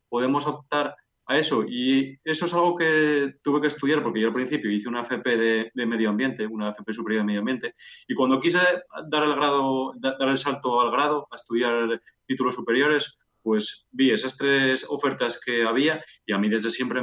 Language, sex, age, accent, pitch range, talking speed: Spanish, male, 30-49, Spanish, 110-135 Hz, 200 wpm